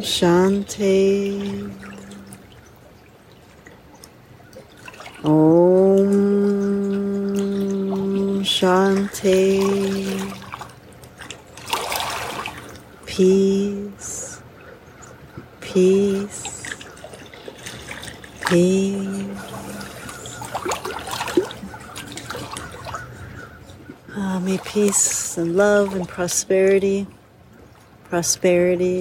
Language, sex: English, female